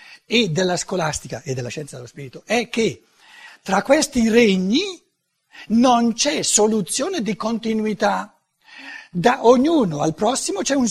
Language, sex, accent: Italian, male, native